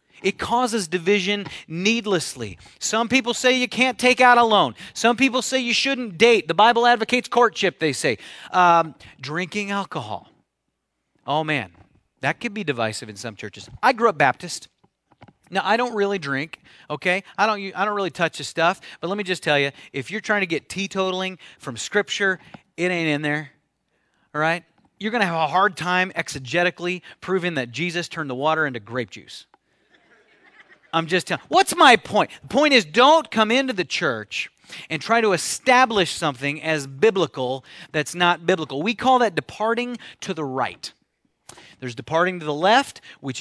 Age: 30-49